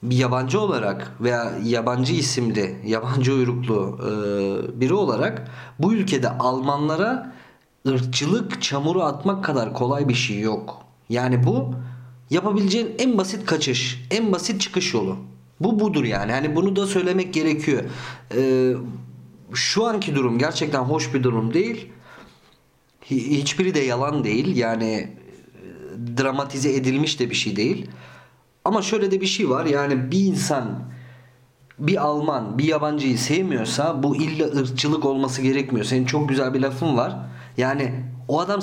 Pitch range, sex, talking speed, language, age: 125-170 Hz, male, 130 wpm, Turkish, 40-59